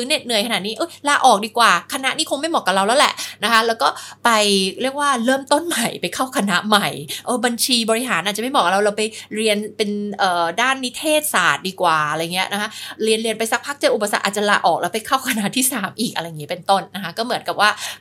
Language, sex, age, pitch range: Thai, female, 20-39, 180-250 Hz